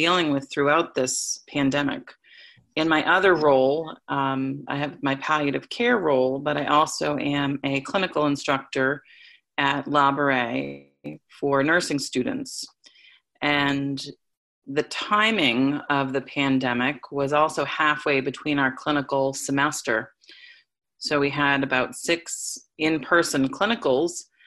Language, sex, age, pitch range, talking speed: English, female, 30-49, 135-160 Hz, 120 wpm